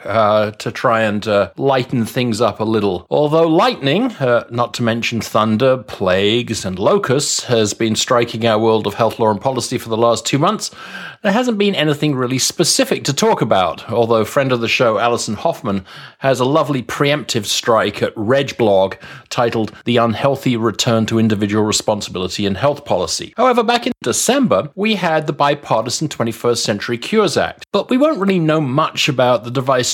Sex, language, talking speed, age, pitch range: male, English, 180 wpm, 40-59, 110-145 Hz